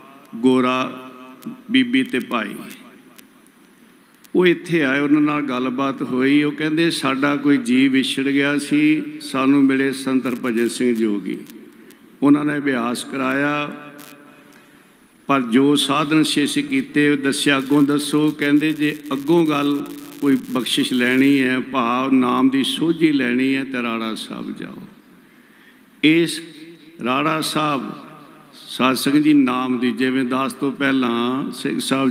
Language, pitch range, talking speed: Punjabi, 130-205 Hz, 125 wpm